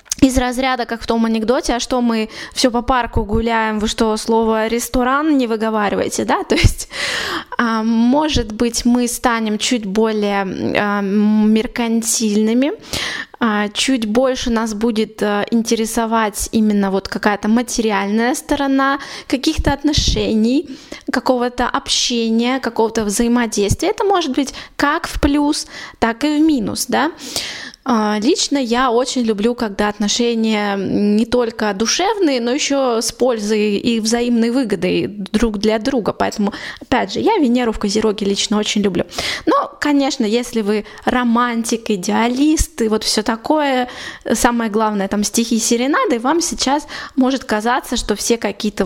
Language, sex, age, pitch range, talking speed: Russian, female, 20-39, 220-260 Hz, 130 wpm